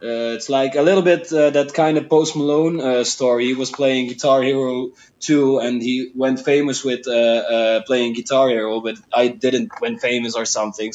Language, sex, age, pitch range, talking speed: English, male, 20-39, 115-135 Hz, 205 wpm